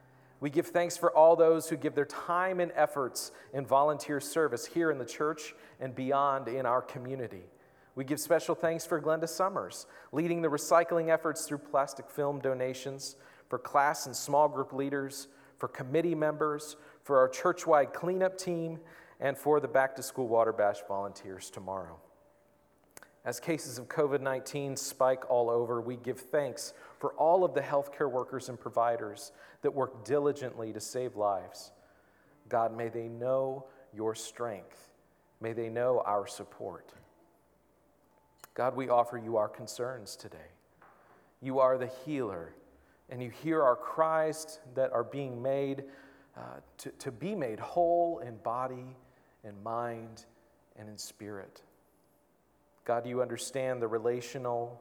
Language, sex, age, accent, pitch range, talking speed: English, male, 40-59, American, 120-150 Hz, 150 wpm